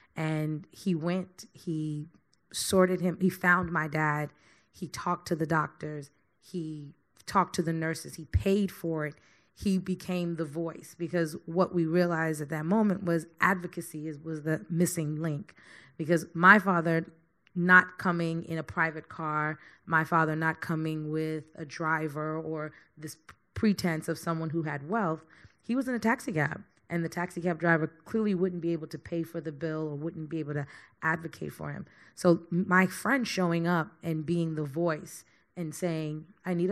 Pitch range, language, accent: 155-180 Hz, English, American